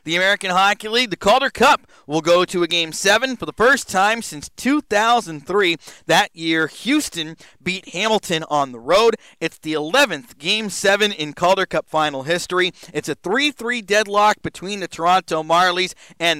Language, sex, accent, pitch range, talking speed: English, male, American, 160-205 Hz, 170 wpm